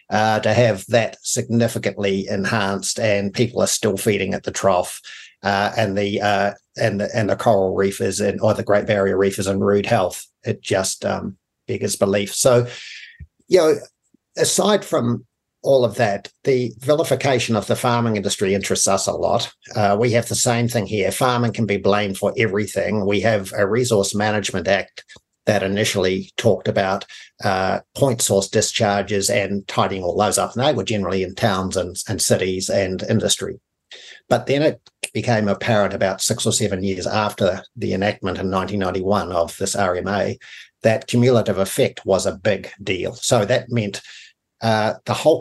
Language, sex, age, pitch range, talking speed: English, male, 50-69, 100-115 Hz, 175 wpm